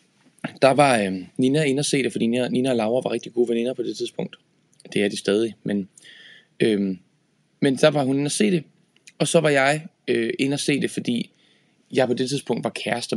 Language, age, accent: Danish, 20-39, native